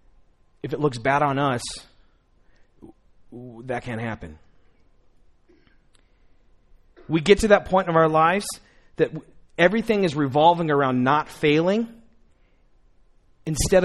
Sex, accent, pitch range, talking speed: male, American, 105-150 Hz, 110 wpm